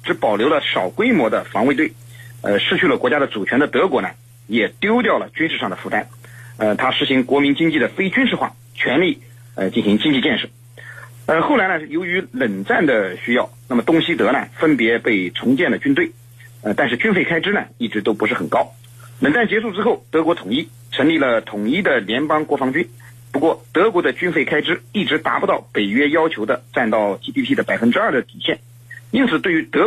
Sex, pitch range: male, 120-160 Hz